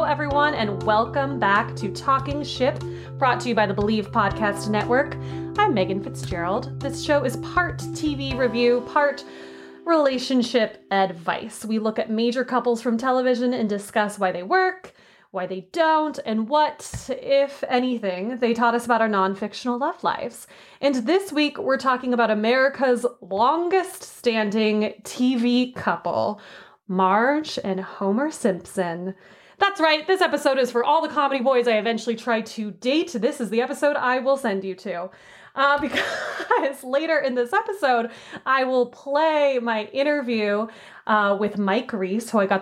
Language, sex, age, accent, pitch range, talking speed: English, female, 20-39, American, 205-260 Hz, 160 wpm